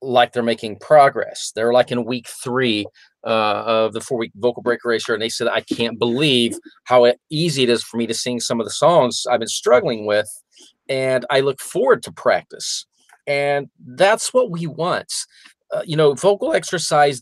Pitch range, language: 115-140 Hz, English